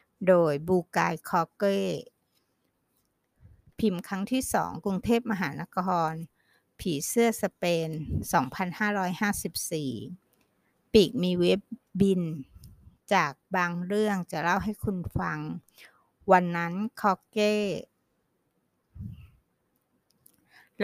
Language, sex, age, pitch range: Thai, female, 60-79, 165-210 Hz